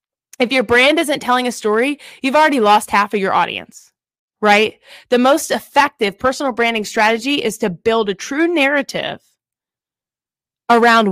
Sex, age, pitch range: female, 20-39, 205-270 Hz